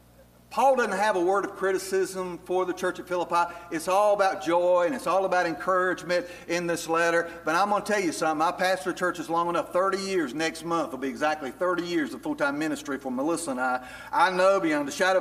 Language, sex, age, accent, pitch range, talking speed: English, male, 50-69, American, 170-235 Hz, 230 wpm